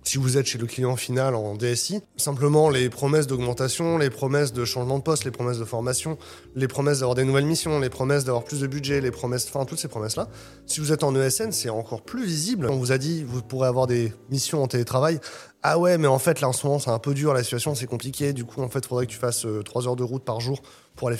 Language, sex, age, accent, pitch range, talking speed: French, male, 20-39, French, 120-150 Hz, 275 wpm